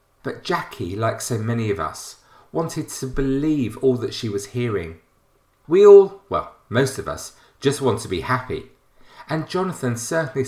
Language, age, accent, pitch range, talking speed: English, 40-59, British, 110-145 Hz, 165 wpm